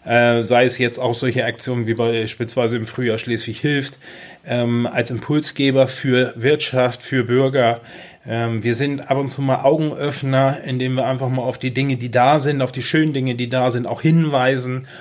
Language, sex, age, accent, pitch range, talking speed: German, male, 30-49, German, 120-135 Hz, 175 wpm